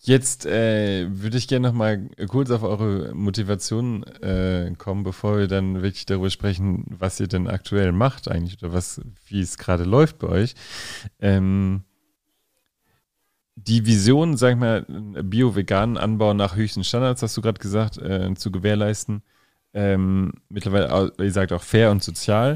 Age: 30-49